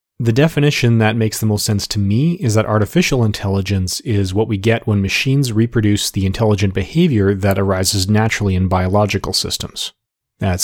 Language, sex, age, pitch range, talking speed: English, male, 30-49, 100-120 Hz, 170 wpm